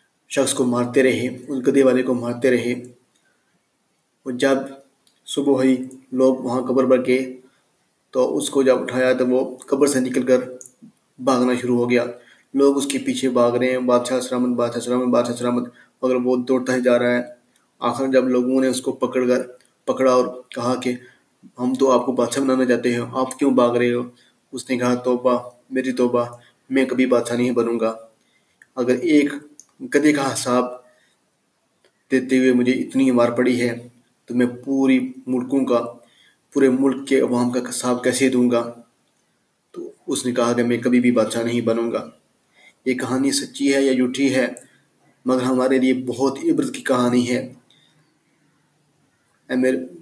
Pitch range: 125-130 Hz